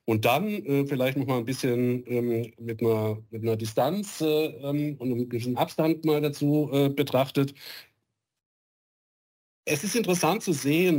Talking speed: 155 wpm